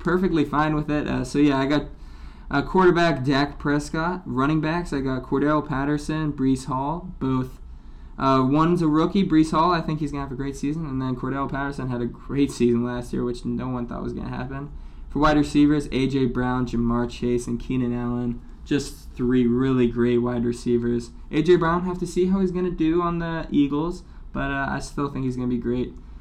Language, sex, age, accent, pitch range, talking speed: English, male, 20-39, American, 120-145 Hz, 215 wpm